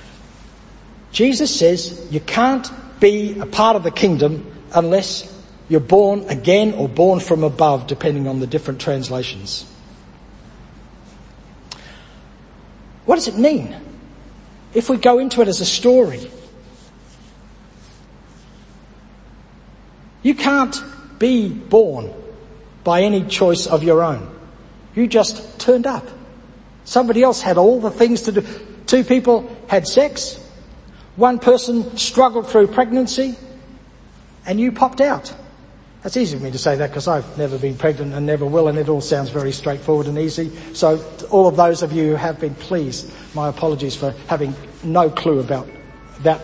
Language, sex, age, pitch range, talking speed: English, male, 60-79, 155-245 Hz, 145 wpm